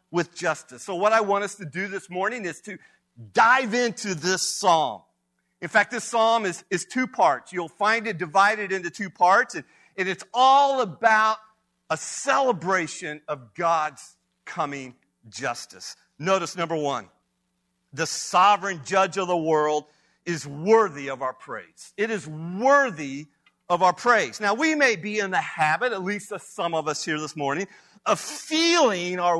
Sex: male